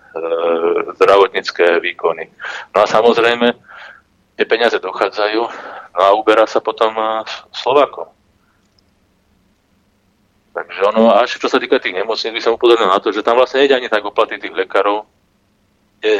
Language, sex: Slovak, male